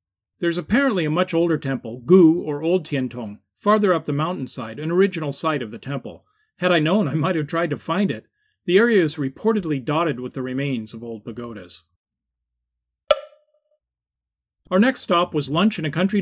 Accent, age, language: American, 40-59, English